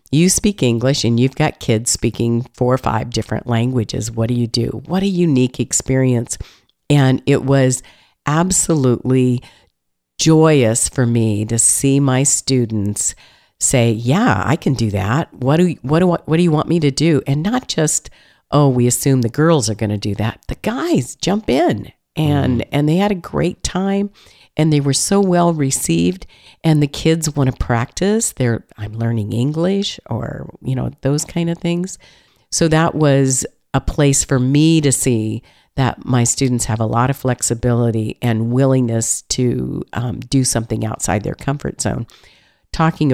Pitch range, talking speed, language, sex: 115-145 Hz, 170 wpm, English, female